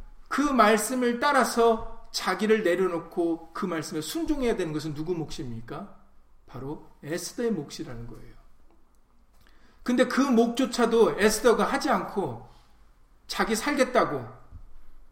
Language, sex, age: Korean, male, 40-59